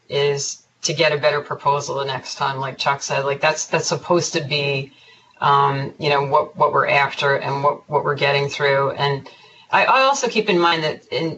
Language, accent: English, American